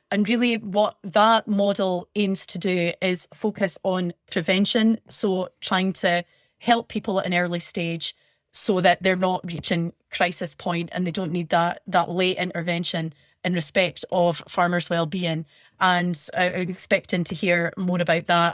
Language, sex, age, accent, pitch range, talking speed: English, female, 30-49, British, 170-185 Hz, 160 wpm